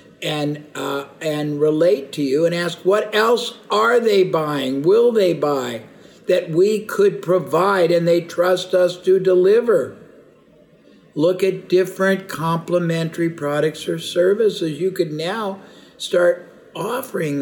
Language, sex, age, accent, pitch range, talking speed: English, male, 60-79, American, 145-190 Hz, 130 wpm